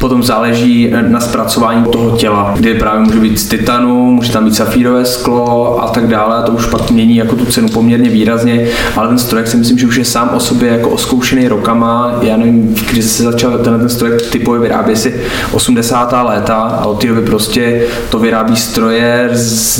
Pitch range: 115-125 Hz